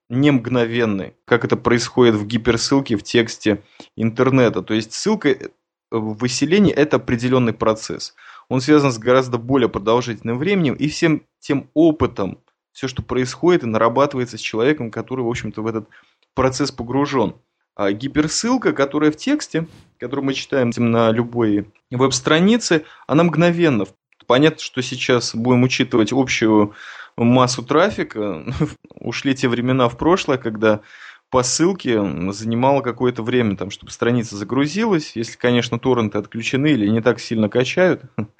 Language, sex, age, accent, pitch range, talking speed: Russian, male, 20-39, native, 115-140 Hz, 140 wpm